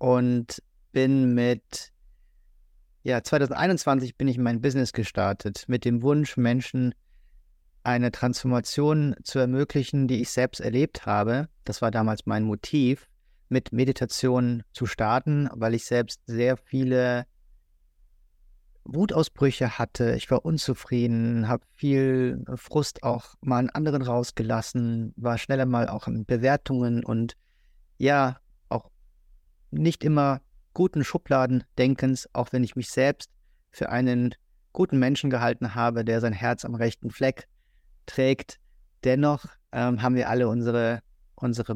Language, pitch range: German, 115-130 Hz